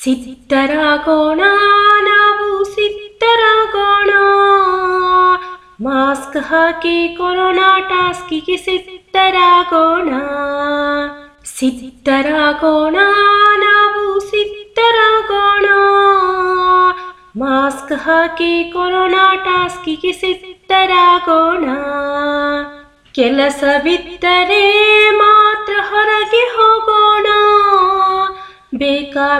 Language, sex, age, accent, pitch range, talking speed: Kannada, female, 20-39, native, 295-405 Hz, 60 wpm